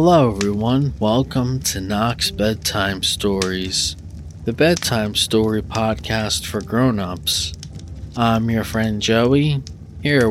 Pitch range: 90-120 Hz